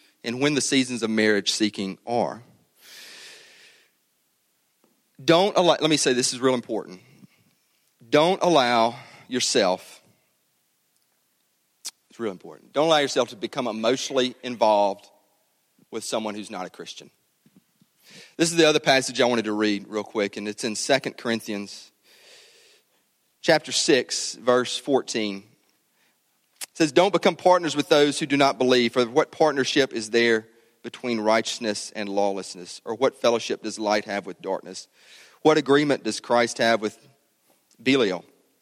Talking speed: 140 wpm